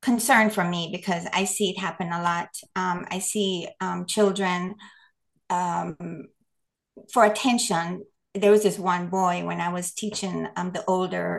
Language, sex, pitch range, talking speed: English, female, 190-235 Hz, 160 wpm